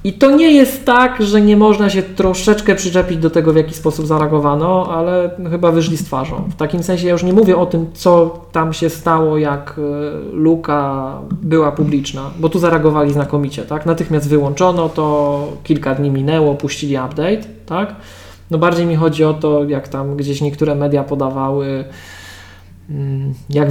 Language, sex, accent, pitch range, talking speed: Polish, male, native, 135-165 Hz, 165 wpm